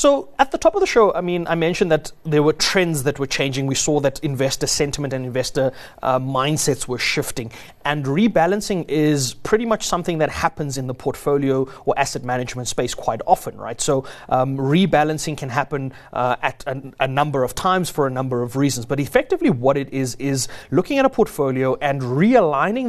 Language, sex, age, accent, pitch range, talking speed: English, male, 30-49, South African, 135-175 Hz, 195 wpm